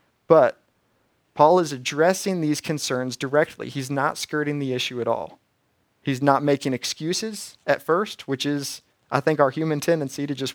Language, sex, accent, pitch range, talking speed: English, male, American, 125-165 Hz, 165 wpm